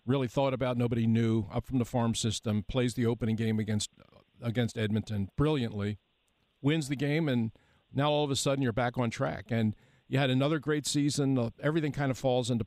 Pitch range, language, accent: 115-140 Hz, English, American